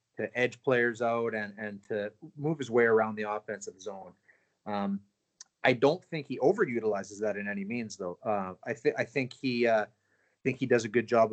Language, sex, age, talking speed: English, male, 30-49, 195 wpm